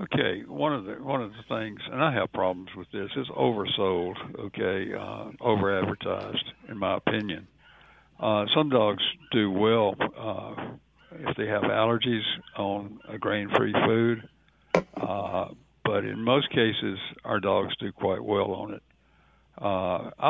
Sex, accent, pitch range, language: male, American, 100-115 Hz, English